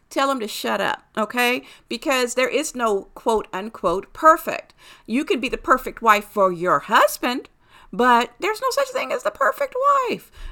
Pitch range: 215-275 Hz